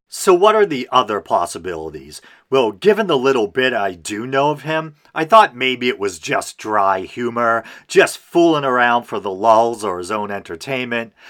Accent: American